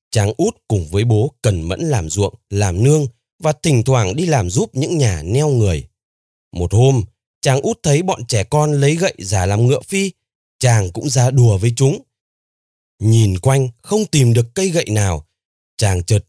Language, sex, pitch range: Vietnamese, male, 105-160 Hz